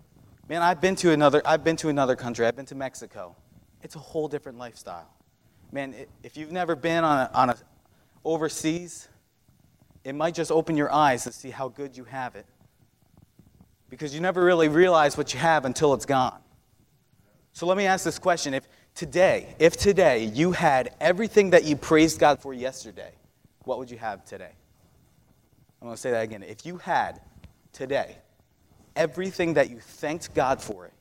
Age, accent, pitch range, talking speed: 30-49, American, 125-160 Hz, 180 wpm